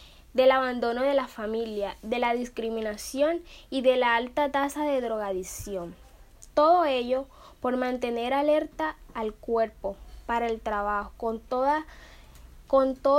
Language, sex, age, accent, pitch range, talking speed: Spanish, female, 10-29, American, 220-270 Hz, 125 wpm